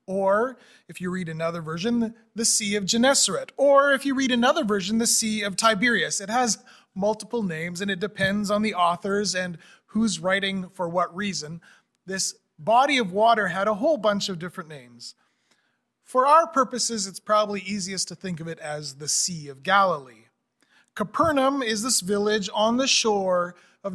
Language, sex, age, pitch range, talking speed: English, male, 30-49, 185-245 Hz, 175 wpm